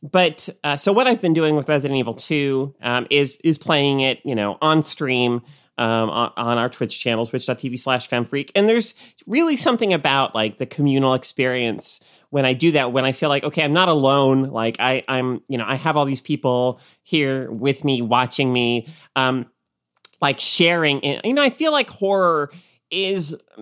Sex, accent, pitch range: male, American, 125-165 Hz